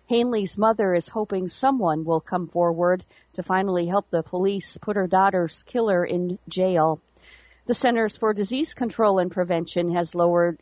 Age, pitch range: 50-69, 170-210 Hz